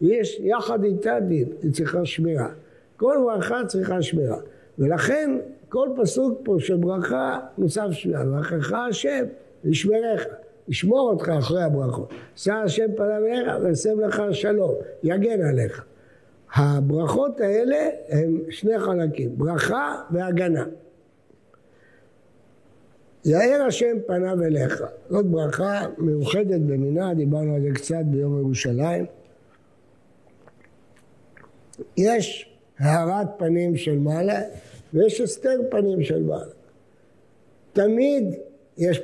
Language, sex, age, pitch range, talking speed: English, male, 60-79, 155-215 Hz, 90 wpm